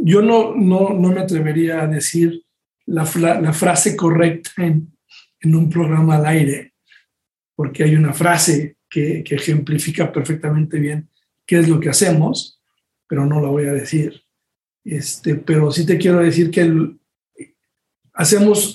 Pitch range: 155-175 Hz